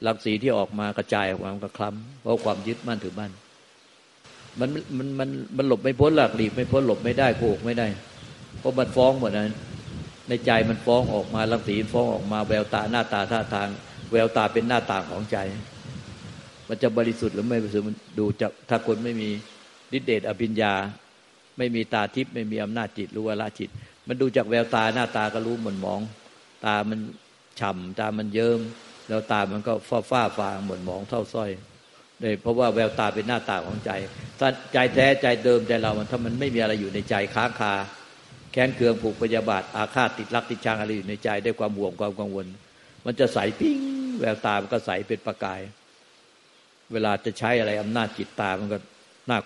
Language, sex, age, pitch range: Thai, male, 60-79, 105-120 Hz